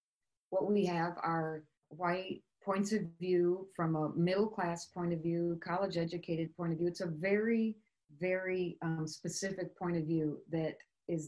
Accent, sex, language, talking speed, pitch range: American, female, English, 165 wpm, 160-195 Hz